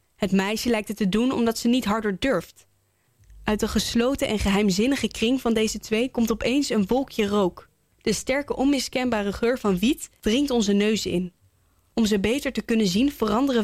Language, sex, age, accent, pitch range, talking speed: English, female, 10-29, Dutch, 200-245 Hz, 185 wpm